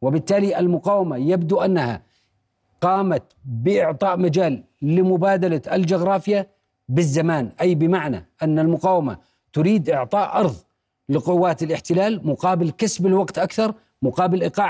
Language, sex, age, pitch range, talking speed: Arabic, male, 40-59, 150-190 Hz, 100 wpm